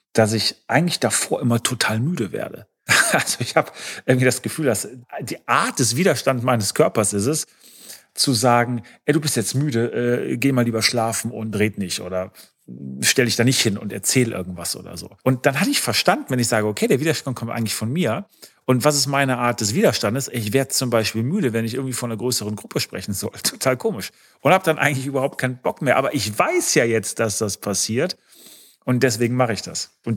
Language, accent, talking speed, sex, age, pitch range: German, German, 215 wpm, male, 40-59, 110-185 Hz